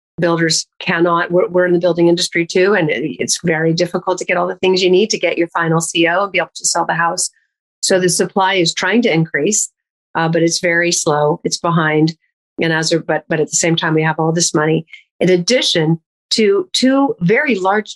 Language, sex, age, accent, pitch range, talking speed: English, female, 40-59, American, 170-215 Hz, 225 wpm